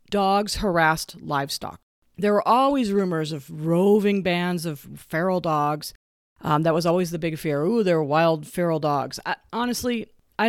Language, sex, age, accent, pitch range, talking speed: English, female, 40-59, American, 150-195 Hz, 165 wpm